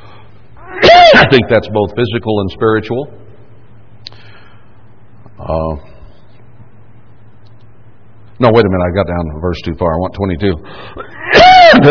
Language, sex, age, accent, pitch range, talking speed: English, male, 60-79, American, 105-120 Hz, 110 wpm